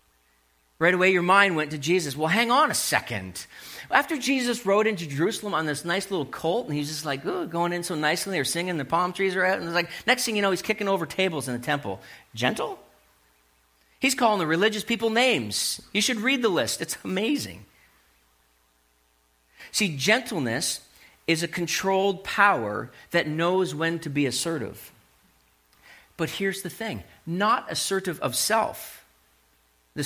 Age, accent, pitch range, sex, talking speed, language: 40-59, American, 130-205 Hz, male, 175 wpm, English